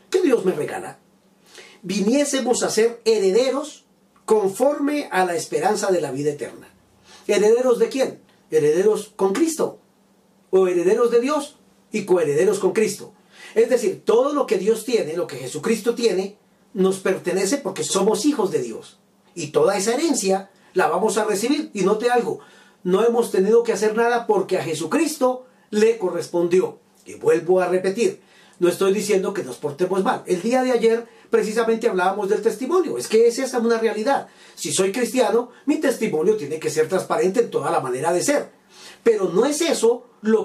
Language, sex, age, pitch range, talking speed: Spanish, male, 40-59, 195-285 Hz, 170 wpm